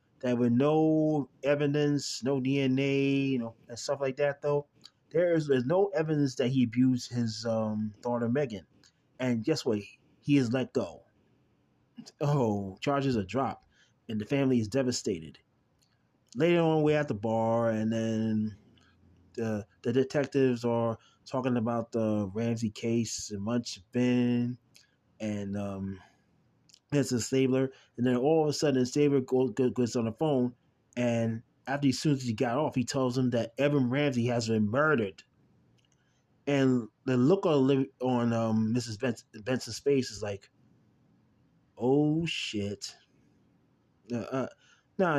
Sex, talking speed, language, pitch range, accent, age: male, 145 wpm, English, 115-140 Hz, American, 20-39